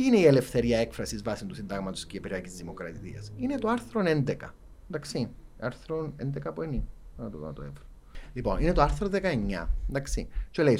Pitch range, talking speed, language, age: 110-150 Hz, 150 wpm, Greek, 30-49